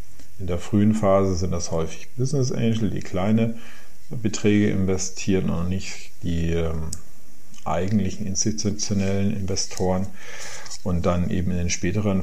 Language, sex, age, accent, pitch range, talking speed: German, male, 40-59, German, 90-110 Hz, 125 wpm